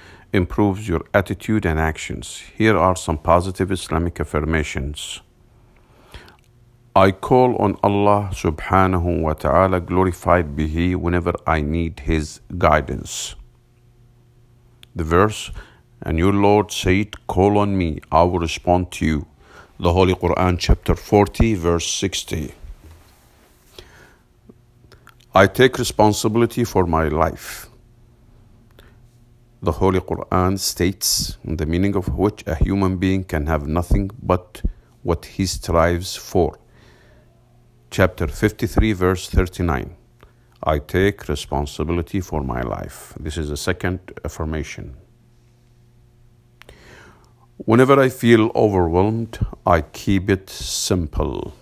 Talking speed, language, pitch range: 110 wpm, English, 85-110 Hz